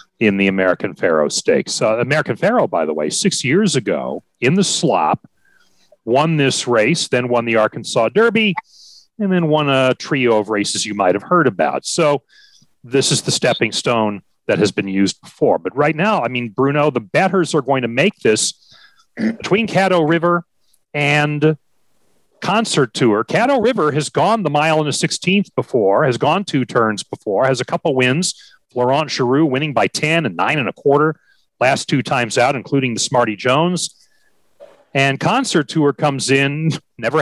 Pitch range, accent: 125-165 Hz, American